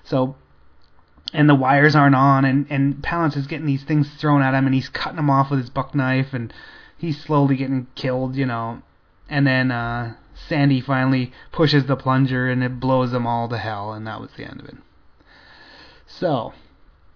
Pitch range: 125-145 Hz